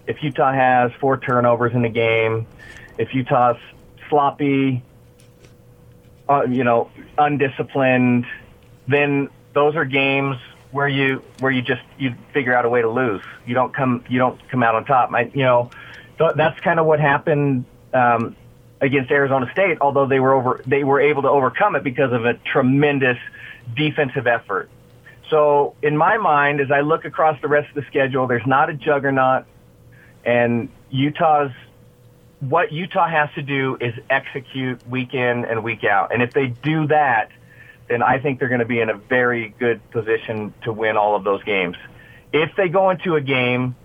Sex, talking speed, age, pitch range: male, 175 wpm, 30-49, 120-145 Hz